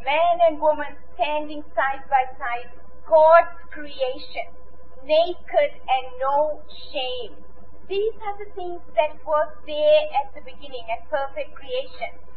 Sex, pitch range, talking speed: female, 265-350 Hz, 125 wpm